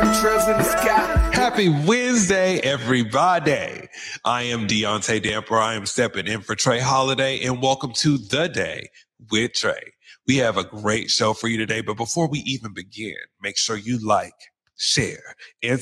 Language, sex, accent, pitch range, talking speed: English, male, American, 105-135 Hz, 150 wpm